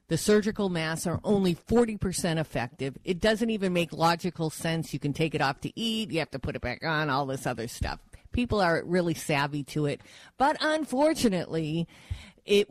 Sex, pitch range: female, 150-195 Hz